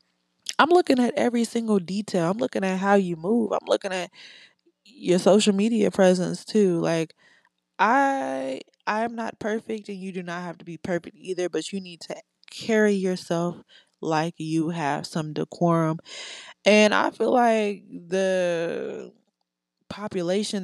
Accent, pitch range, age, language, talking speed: American, 150-195 Hz, 20-39, English, 150 wpm